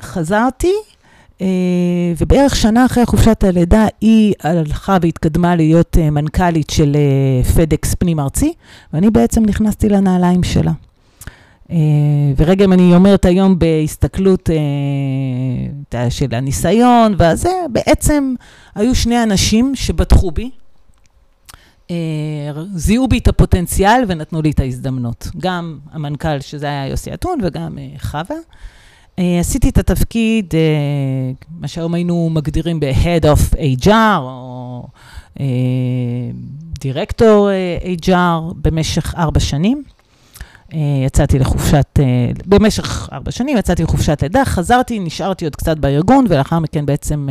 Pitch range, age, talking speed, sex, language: 140-200 Hz, 40-59, 110 wpm, female, Hebrew